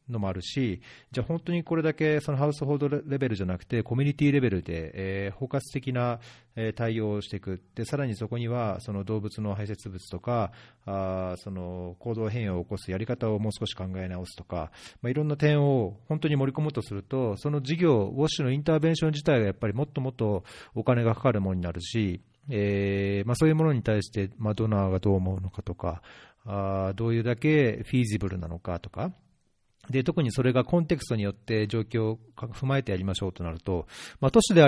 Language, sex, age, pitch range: Japanese, male, 40-59, 100-130 Hz